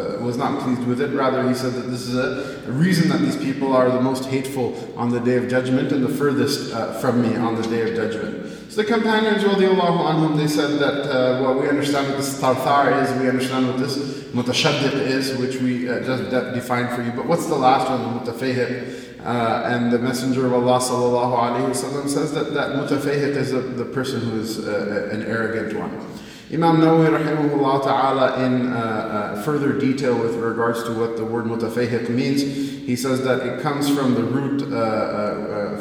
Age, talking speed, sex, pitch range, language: 20-39, 195 wpm, male, 120-140 Hz, English